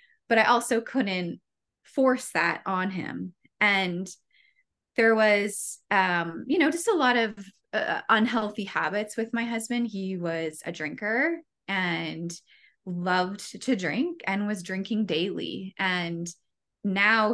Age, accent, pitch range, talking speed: 20-39, American, 175-225 Hz, 130 wpm